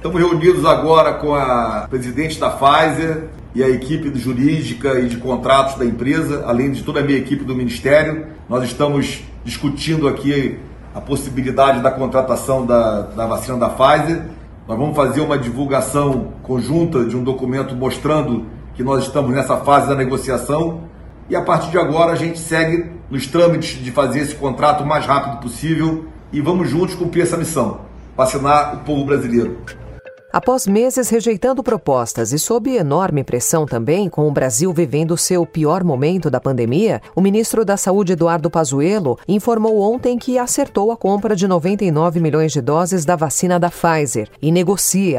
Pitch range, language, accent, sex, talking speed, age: 135-180 Hz, Portuguese, Brazilian, male, 165 wpm, 40-59